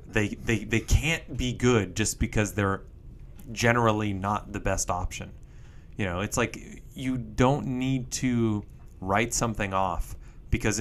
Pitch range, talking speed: 90-115 Hz, 145 wpm